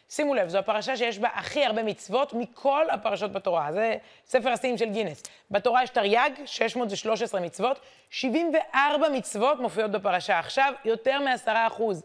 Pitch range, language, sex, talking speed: 195-245 Hz, Hebrew, female, 150 wpm